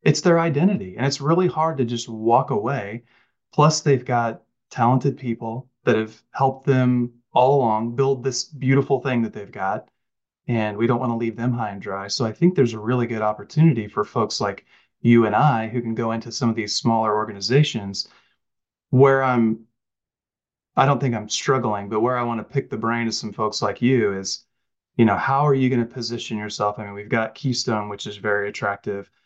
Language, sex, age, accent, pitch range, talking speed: English, male, 30-49, American, 110-130 Hz, 205 wpm